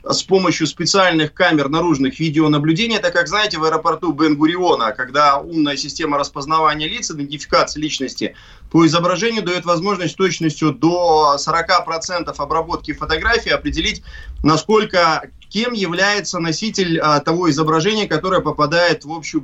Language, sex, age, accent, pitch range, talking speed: Russian, male, 30-49, native, 155-195 Hz, 125 wpm